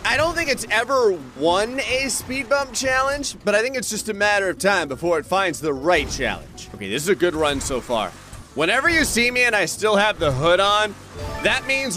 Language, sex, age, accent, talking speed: English, male, 30-49, American, 230 wpm